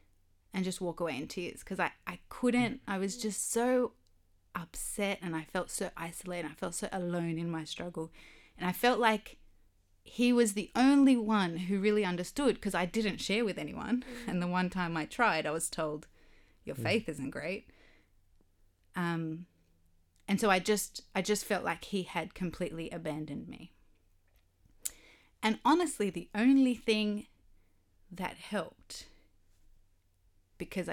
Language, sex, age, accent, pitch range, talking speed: English, female, 30-49, Australian, 150-200 Hz, 155 wpm